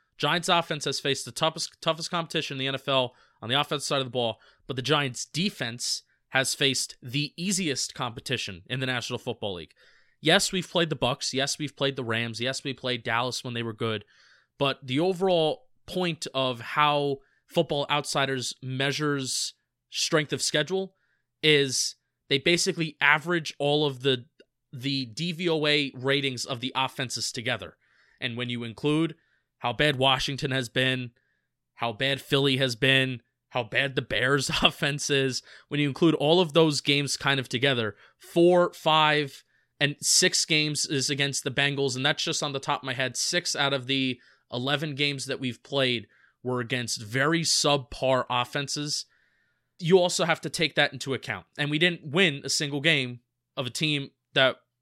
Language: English